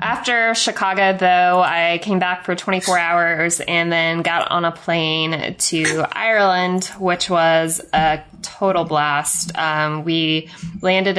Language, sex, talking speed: English, female, 135 wpm